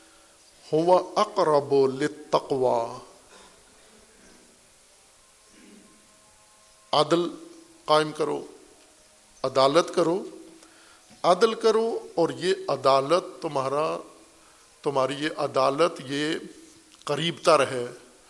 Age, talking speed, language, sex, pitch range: 50-69, 65 wpm, Urdu, male, 135-190 Hz